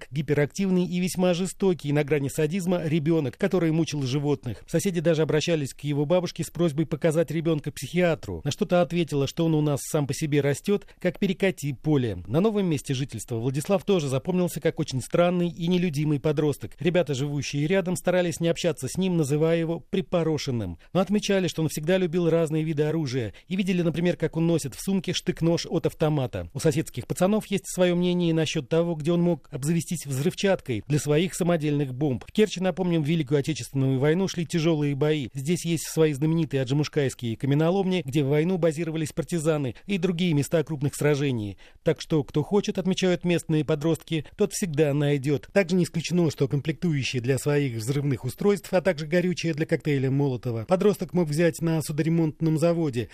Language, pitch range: Russian, 145-175 Hz